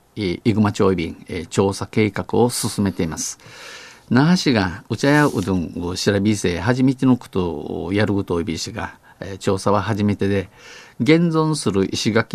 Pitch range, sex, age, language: 95-120 Hz, male, 50-69, Japanese